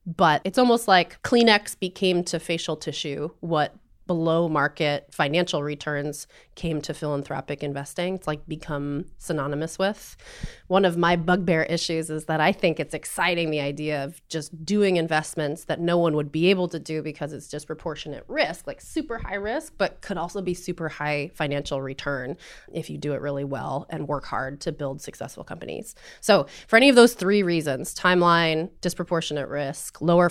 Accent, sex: American, female